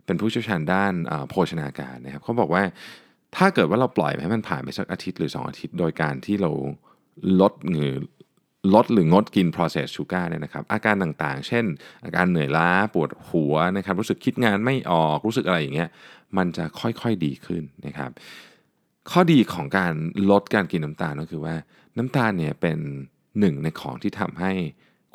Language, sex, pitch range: Thai, male, 80-100 Hz